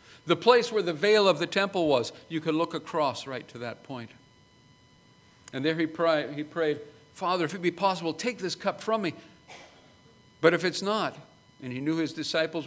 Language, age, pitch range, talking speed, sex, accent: English, 50-69, 130-185 Hz, 195 wpm, male, American